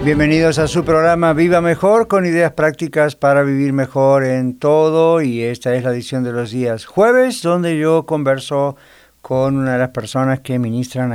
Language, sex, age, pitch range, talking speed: English, male, 50-69, 125-150 Hz, 180 wpm